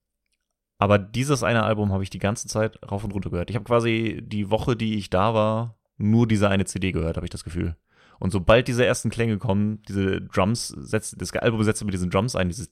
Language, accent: German, German